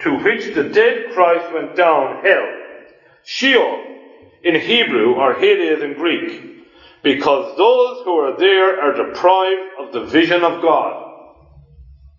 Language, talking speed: English, 135 wpm